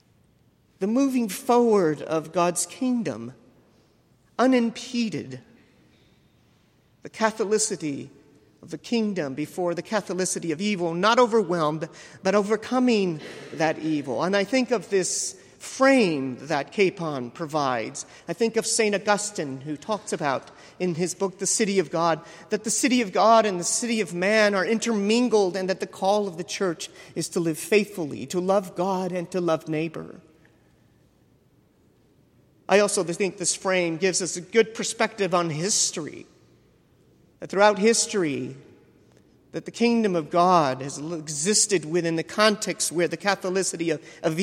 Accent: American